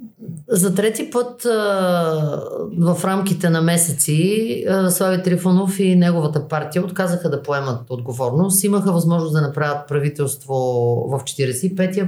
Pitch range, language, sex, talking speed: 160-200 Hz, Bulgarian, female, 115 wpm